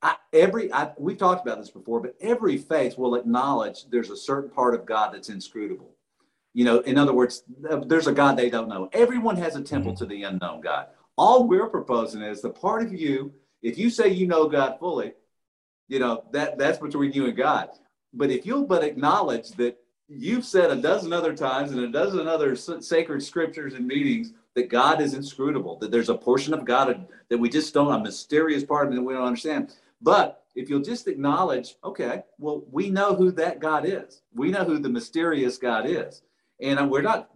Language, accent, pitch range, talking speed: English, American, 125-190 Hz, 205 wpm